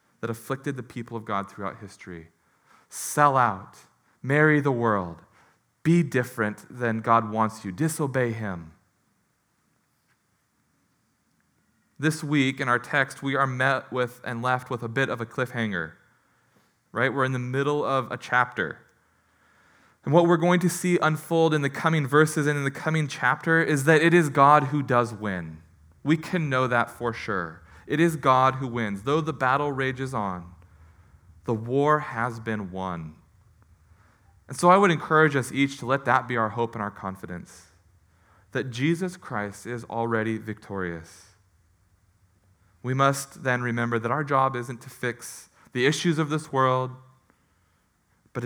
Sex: male